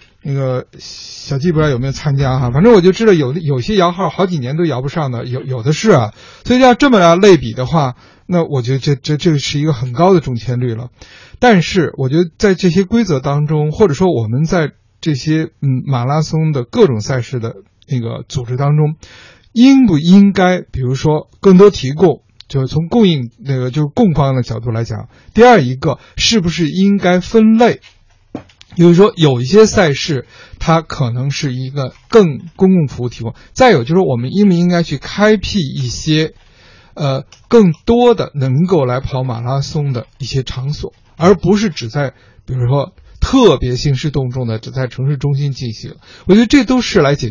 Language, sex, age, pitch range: Chinese, male, 50-69, 125-180 Hz